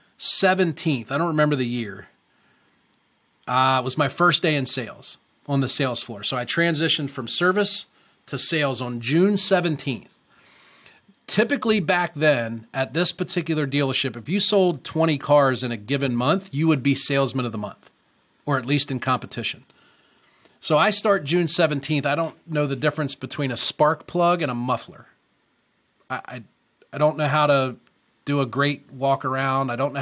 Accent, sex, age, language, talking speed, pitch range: American, male, 30-49, English, 175 wpm, 130-165 Hz